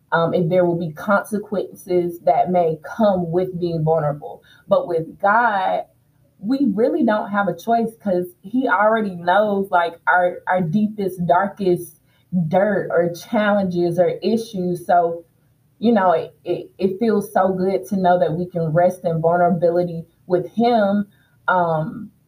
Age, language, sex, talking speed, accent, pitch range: 20-39, English, female, 150 wpm, American, 170-205 Hz